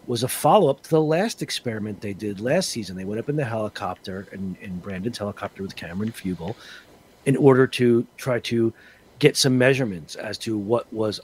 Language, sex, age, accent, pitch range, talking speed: English, male, 40-59, American, 105-135 Hz, 190 wpm